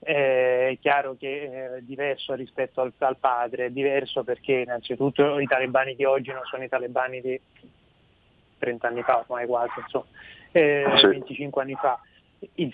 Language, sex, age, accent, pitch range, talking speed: Italian, male, 20-39, native, 130-145 Hz, 155 wpm